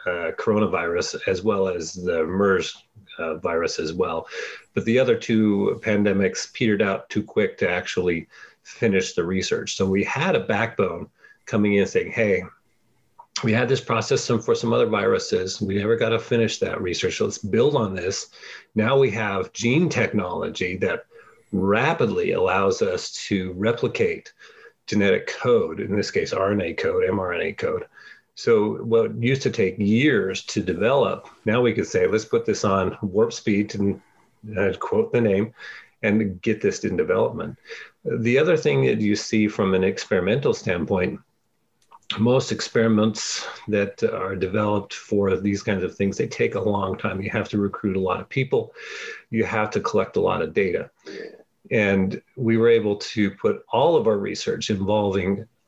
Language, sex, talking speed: English, male, 165 wpm